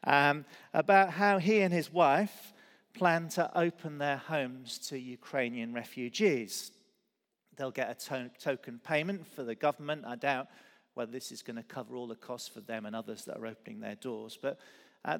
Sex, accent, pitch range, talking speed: male, British, 125-185 Hz, 180 wpm